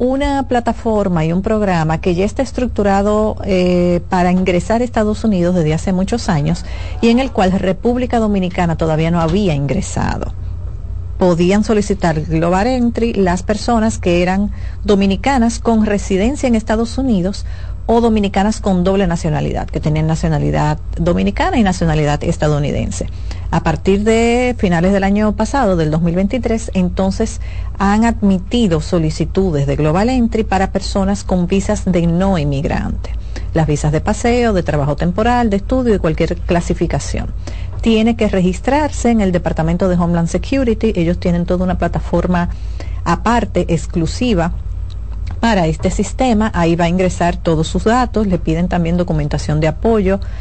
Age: 40-59